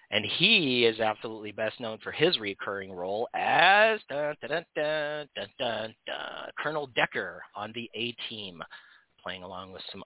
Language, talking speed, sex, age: English, 120 wpm, male, 40-59